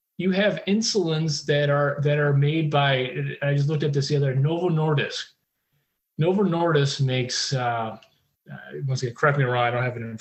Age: 30-49